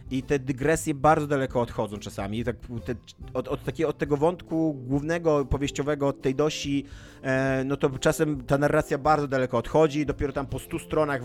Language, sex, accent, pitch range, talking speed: Polish, male, native, 125-155 Hz, 190 wpm